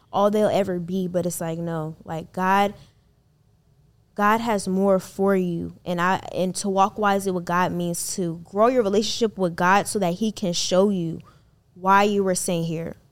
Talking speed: 190 wpm